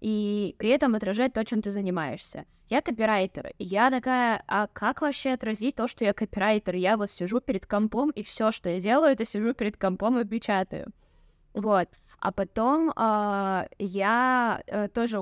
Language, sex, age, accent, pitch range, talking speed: Russian, female, 10-29, native, 190-235 Hz, 170 wpm